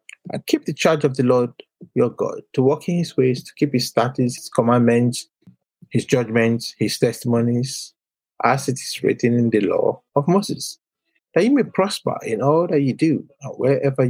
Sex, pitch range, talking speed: male, 120-165 Hz, 185 wpm